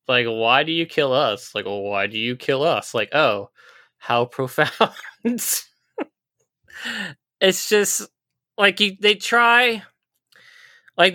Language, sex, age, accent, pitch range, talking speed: English, male, 20-39, American, 115-160 Hz, 125 wpm